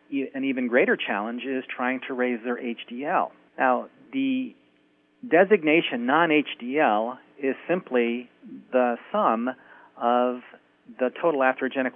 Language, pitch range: English, 120-140 Hz